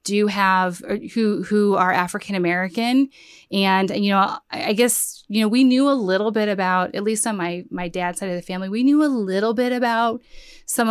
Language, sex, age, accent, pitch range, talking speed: English, female, 30-49, American, 180-225 Hz, 200 wpm